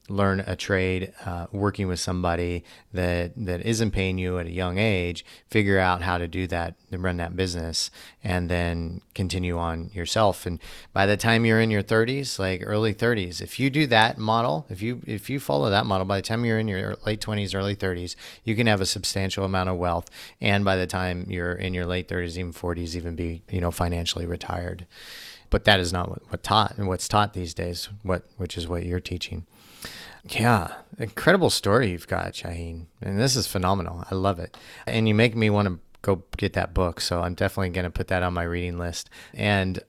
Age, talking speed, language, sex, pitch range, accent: 30-49, 215 wpm, English, male, 90-105 Hz, American